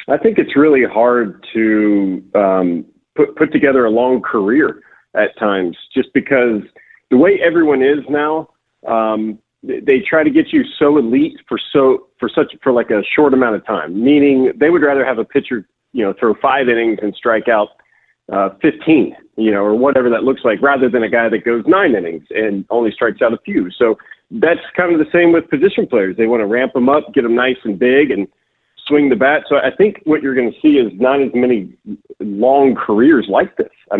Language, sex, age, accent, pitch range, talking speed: English, male, 40-59, American, 115-160 Hz, 215 wpm